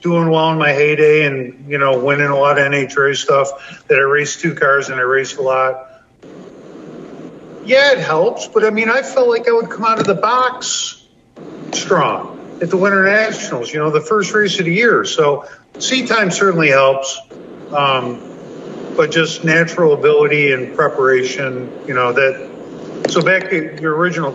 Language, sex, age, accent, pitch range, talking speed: English, male, 50-69, American, 145-205 Hz, 180 wpm